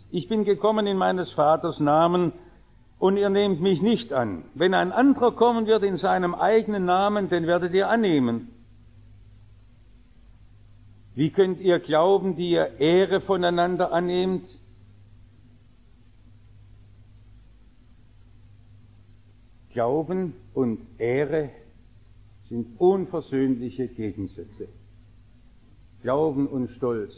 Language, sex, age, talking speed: English, male, 60-79, 95 wpm